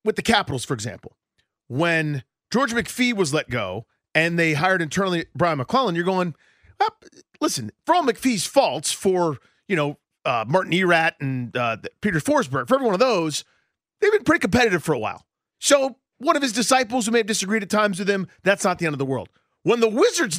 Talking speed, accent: 205 wpm, American